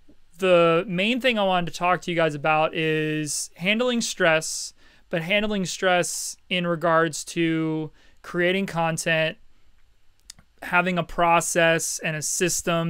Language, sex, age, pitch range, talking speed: English, male, 30-49, 155-175 Hz, 130 wpm